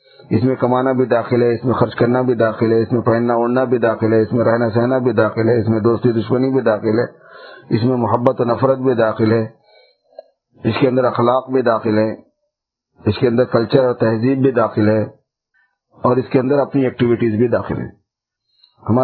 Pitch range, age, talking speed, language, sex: 115-135 Hz, 50-69, 175 wpm, English, male